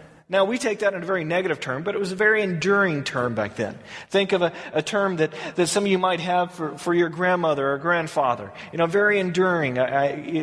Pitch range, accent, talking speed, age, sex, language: 155-215 Hz, American, 235 wpm, 30-49, male, English